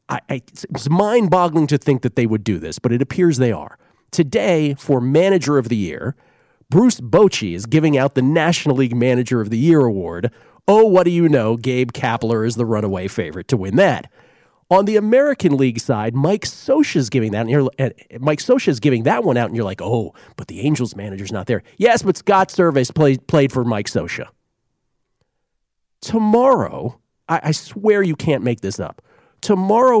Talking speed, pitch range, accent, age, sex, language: 190 wpm, 120-185 Hz, American, 40-59, male, English